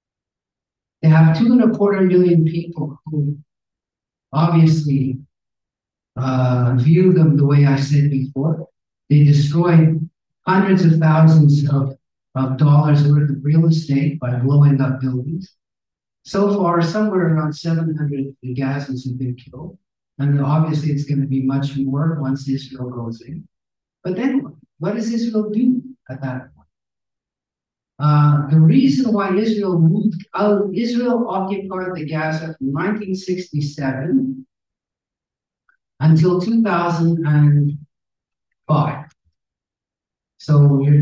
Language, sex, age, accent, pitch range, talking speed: English, male, 60-79, American, 135-175 Hz, 120 wpm